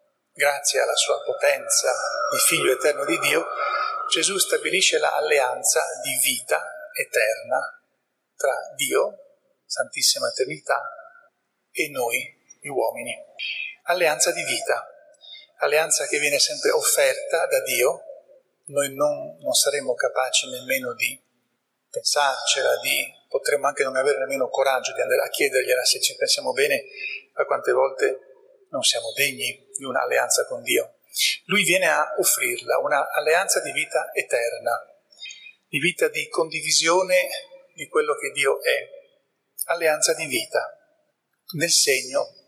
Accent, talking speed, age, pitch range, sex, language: native, 125 wpm, 40-59, 295-475 Hz, male, Italian